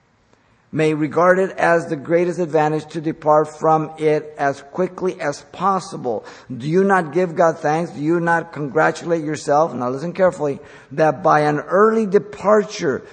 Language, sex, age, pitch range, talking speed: English, male, 50-69, 145-180 Hz, 155 wpm